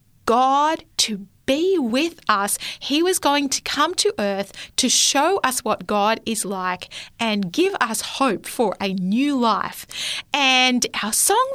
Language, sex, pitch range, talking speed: English, female, 210-300 Hz, 155 wpm